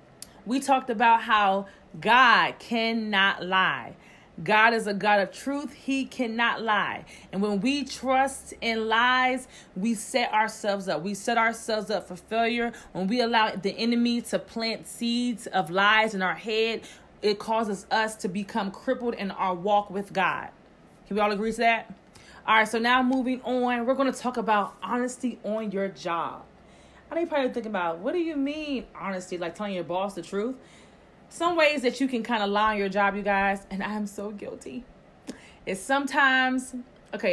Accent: American